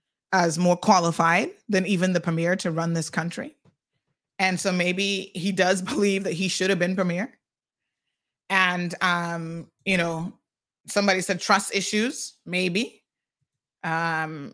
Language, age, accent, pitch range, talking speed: English, 30-49, American, 170-200 Hz, 135 wpm